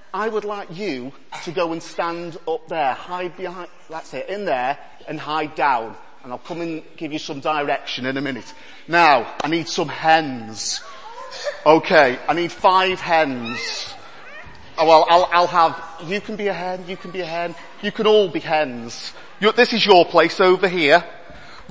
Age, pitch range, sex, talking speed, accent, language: 30-49, 170-240 Hz, male, 185 wpm, British, English